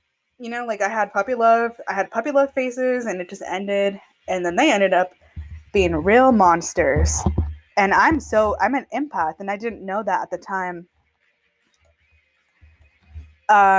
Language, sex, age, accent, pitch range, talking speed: English, female, 20-39, American, 175-230 Hz, 170 wpm